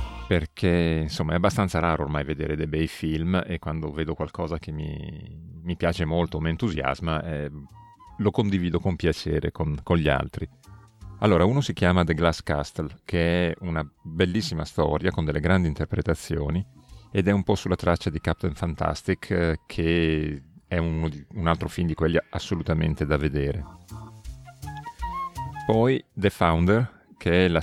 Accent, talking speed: native, 155 wpm